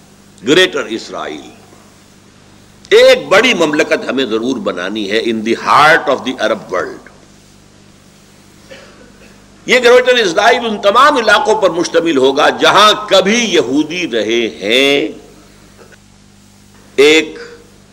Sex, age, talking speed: male, 60-79, 105 wpm